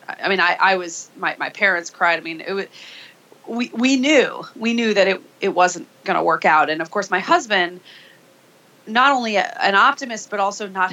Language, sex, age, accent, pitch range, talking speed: English, female, 30-49, American, 170-215 Hz, 215 wpm